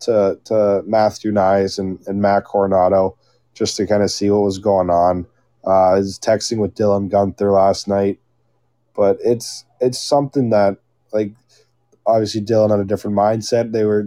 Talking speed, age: 170 wpm, 20-39